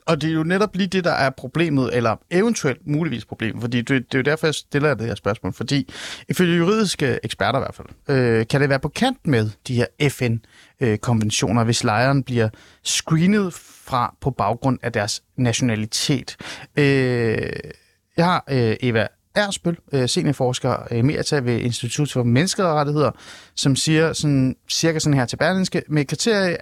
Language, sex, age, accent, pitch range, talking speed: Danish, male, 30-49, native, 120-155 Hz, 170 wpm